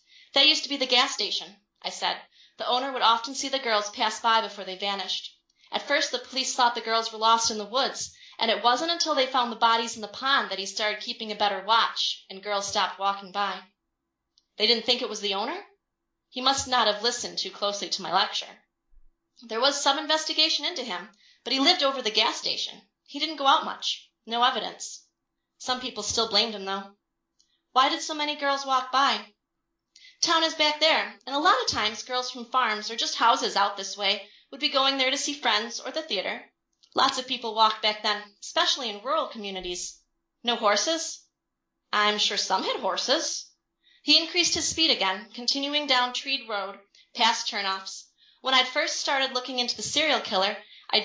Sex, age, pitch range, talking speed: female, 30-49, 205-275 Hz, 200 wpm